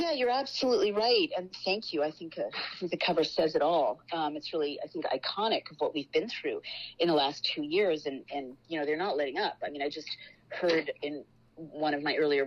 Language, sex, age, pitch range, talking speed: English, female, 40-59, 150-180 Hz, 245 wpm